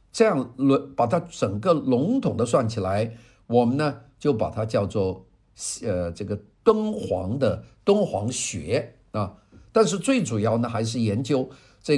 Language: Chinese